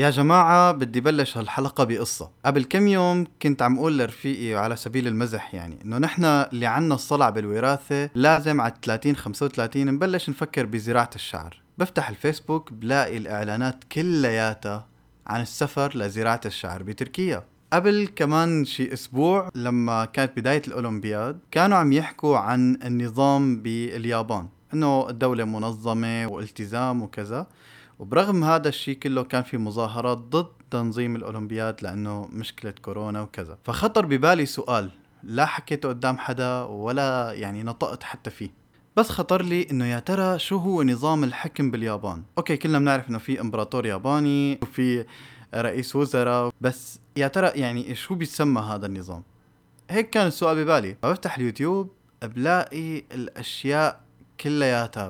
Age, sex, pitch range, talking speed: 20-39, male, 115-150 Hz, 135 wpm